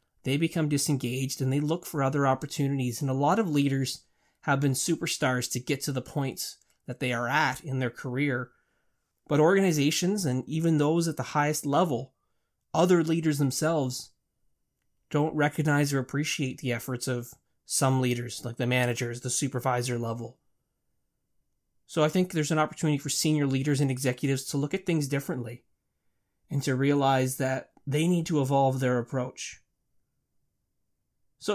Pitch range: 130-155 Hz